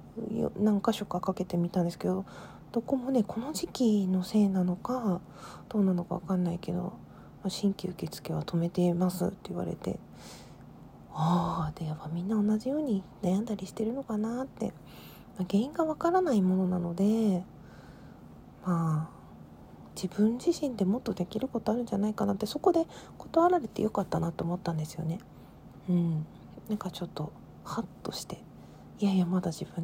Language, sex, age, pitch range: Japanese, female, 40-59, 175-215 Hz